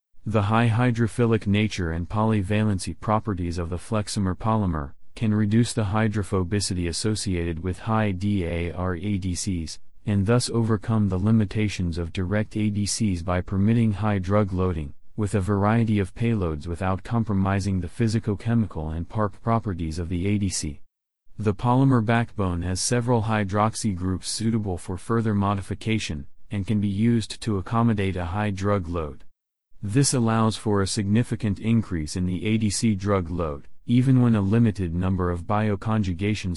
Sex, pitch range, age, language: male, 90-110 Hz, 30-49, English